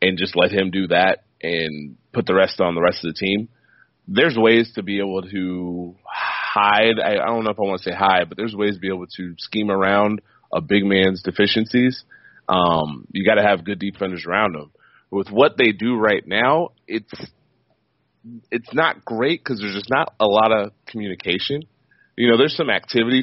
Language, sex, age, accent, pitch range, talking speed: English, male, 30-49, American, 95-115 Hz, 200 wpm